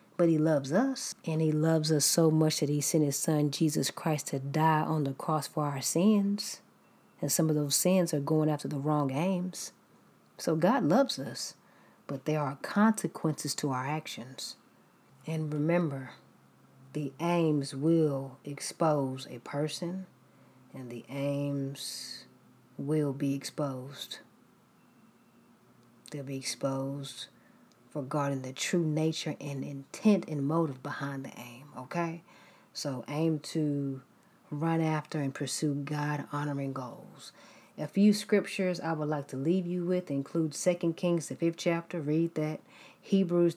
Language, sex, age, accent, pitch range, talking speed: English, female, 40-59, American, 140-175 Hz, 145 wpm